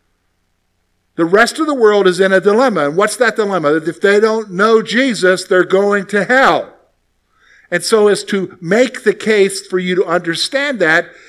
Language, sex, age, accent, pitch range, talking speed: English, male, 50-69, American, 170-220 Hz, 185 wpm